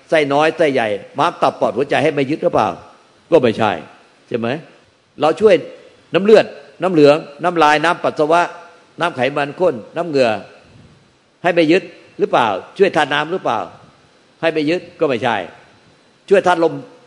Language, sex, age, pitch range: Thai, male, 60-79, 140-170 Hz